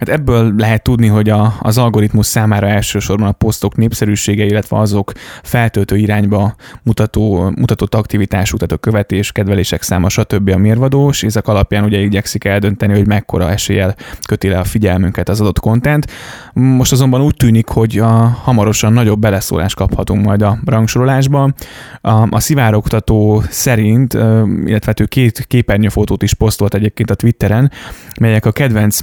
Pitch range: 100-115 Hz